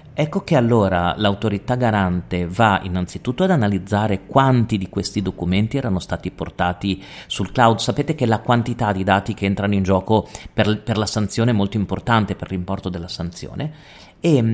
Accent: native